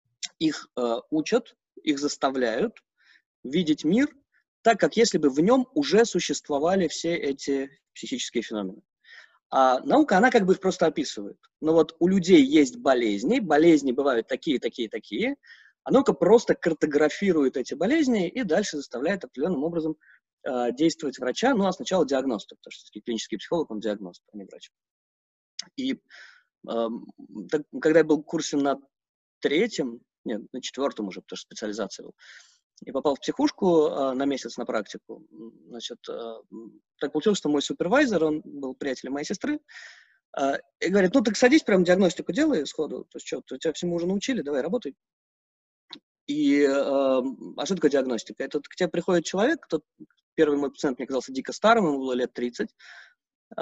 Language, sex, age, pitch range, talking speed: Russian, male, 20-39, 135-215 Hz, 165 wpm